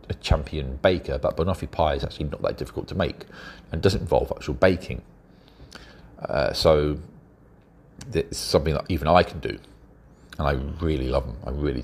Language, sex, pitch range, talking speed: English, male, 70-90 Hz, 170 wpm